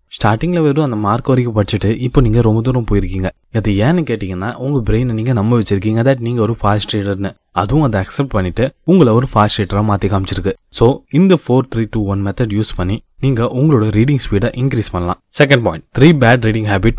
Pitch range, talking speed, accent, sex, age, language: 100-135 Hz, 150 wpm, native, male, 20-39, Tamil